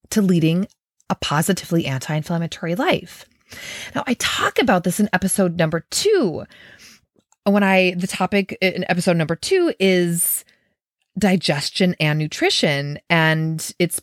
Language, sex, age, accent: English, female, 30-49, American